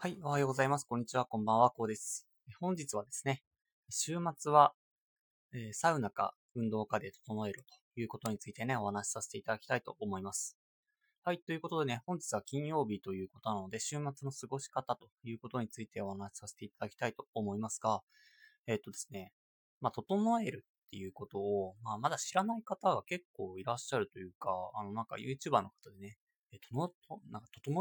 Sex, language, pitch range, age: male, Japanese, 100-155 Hz, 20-39